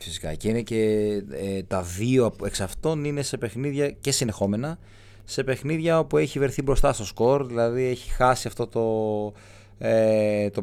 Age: 30-49